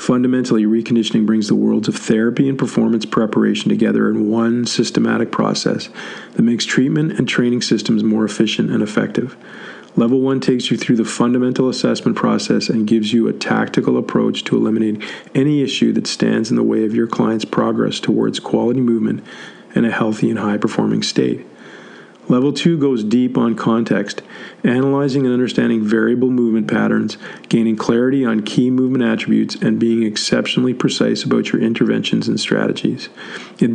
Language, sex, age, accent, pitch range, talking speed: English, male, 40-59, American, 110-125 Hz, 160 wpm